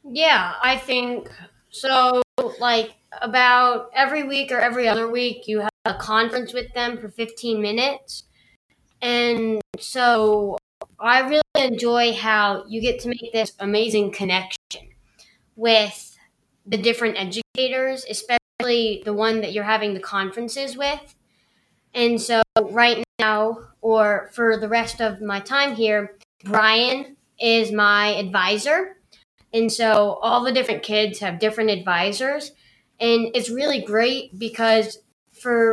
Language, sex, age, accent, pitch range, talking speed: English, female, 20-39, American, 210-245 Hz, 130 wpm